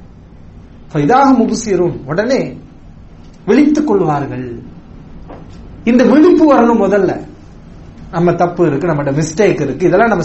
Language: English